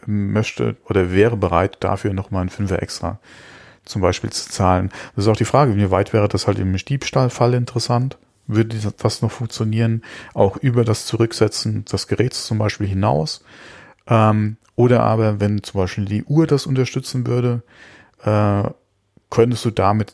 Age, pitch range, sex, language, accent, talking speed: 40-59, 95-115 Hz, male, German, German, 160 wpm